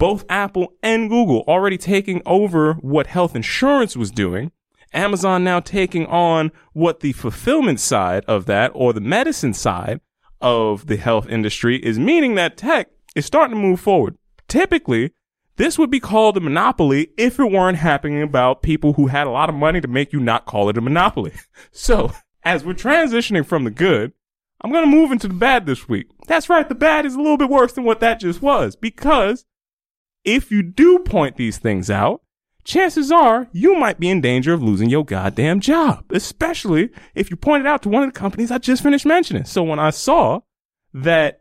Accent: American